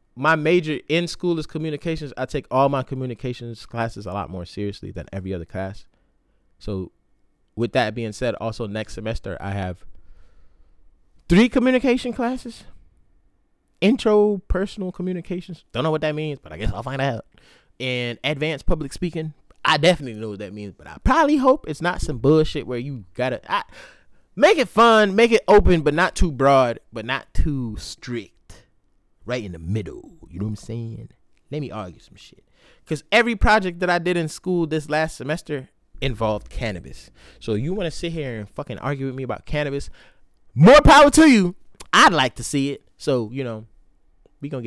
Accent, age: American, 20-39